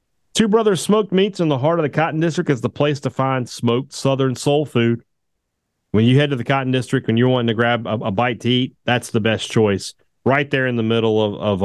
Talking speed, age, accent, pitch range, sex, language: 245 wpm, 40-59, American, 105-135 Hz, male, English